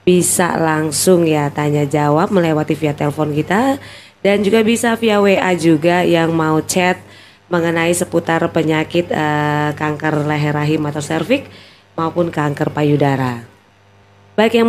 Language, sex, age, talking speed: Indonesian, female, 20-39, 130 wpm